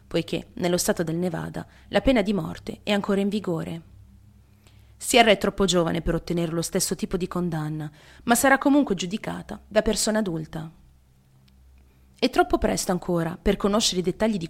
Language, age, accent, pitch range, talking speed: Italian, 30-49, native, 155-220 Hz, 165 wpm